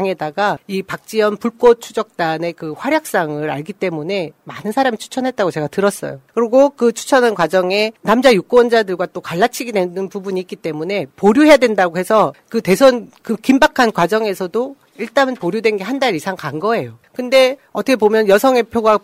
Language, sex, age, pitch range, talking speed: English, female, 40-59, 175-230 Hz, 140 wpm